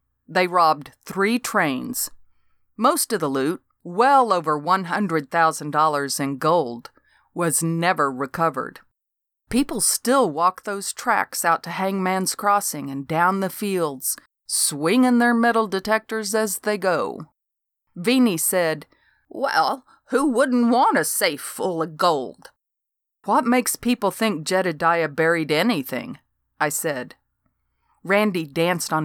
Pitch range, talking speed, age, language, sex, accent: 160-210 Hz, 120 wpm, 40-59, English, female, American